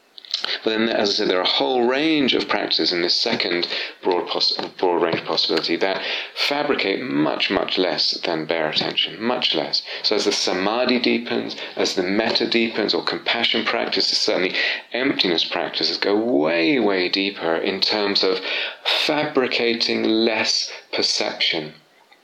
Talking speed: 150 wpm